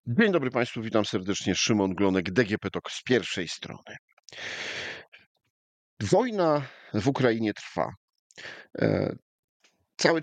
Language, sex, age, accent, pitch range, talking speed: Polish, male, 50-69, native, 95-120 Hz, 100 wpm